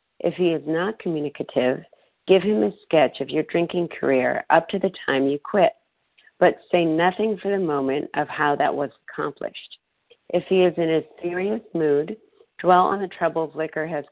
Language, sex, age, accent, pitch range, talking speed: English, female, 50-69, American, 150-180 Hz, 185 wpm